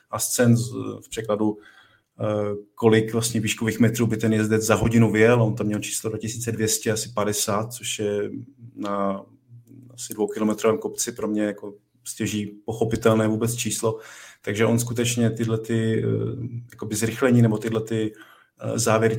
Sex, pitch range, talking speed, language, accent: male, 105-115 Hz, 130 wpm, Czech, native